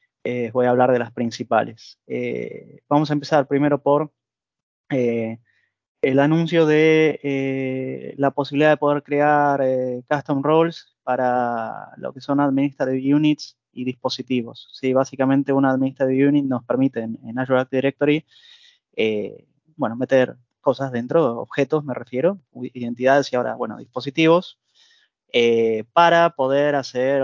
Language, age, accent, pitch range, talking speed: Spanish, 20-39, Argentinian, 120-145 Hz, 140 wpm